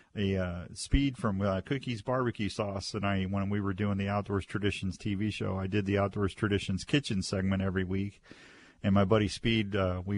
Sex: male